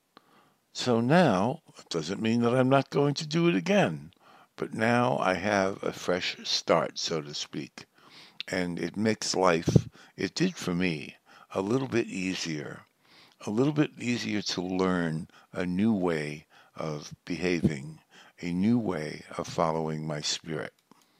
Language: English